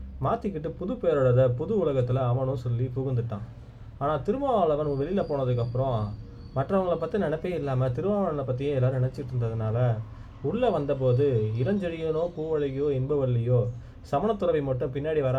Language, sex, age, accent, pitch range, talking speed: Tamil, male, 20-39, native, 120-145 Hz, 115 wpm